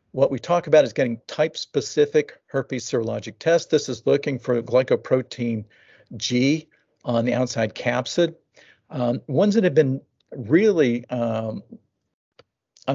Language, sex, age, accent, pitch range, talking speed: English, male, 50-69, American, 115-145 Hz, 125 wpm